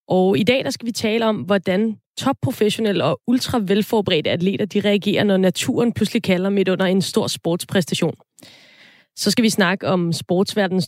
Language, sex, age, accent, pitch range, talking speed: Danish, female, 20-39, native, 180-220 Hz, 165 wpm